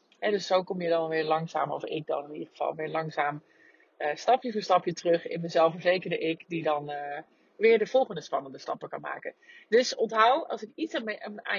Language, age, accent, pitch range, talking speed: Dutch, 30-49, Dutch, 165-215 Hz, 210 wpm